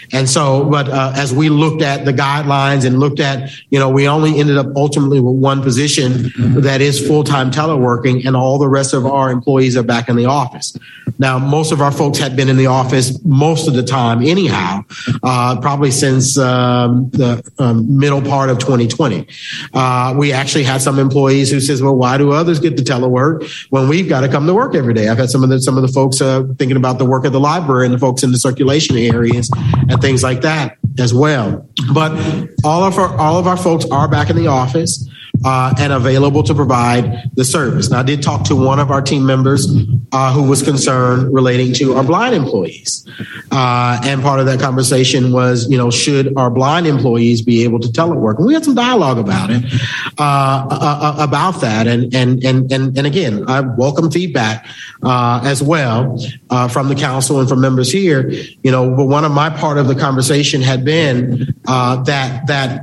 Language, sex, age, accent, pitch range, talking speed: English, male, 50-69, American, 130-145 Hz, 210 wpm